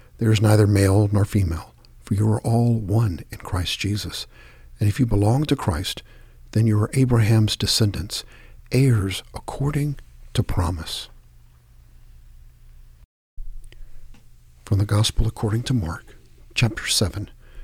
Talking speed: 125 wpm